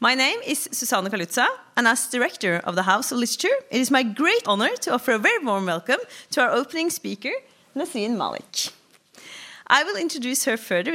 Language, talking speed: English, 190 wpm